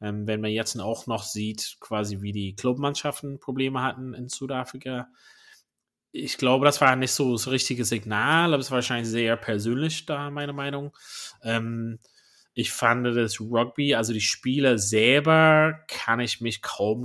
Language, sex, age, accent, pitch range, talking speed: German, male, 20-39, German, 105-135 Hz, 155 wpm